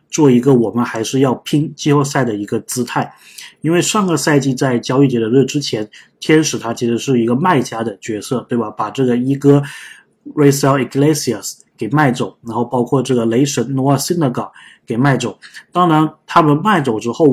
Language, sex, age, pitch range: Chinese, male, 20-39, 120-145 Hz